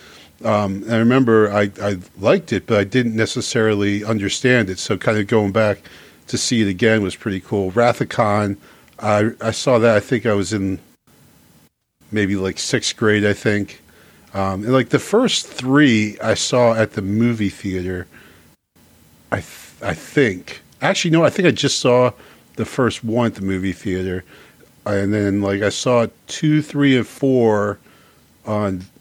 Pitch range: 100-125 Hz